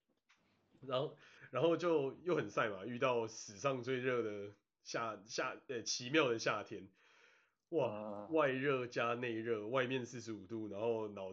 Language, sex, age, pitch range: Chinese, male, 30-49, 110-150 Hz